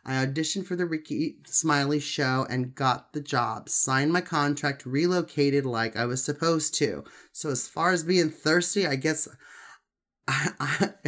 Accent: American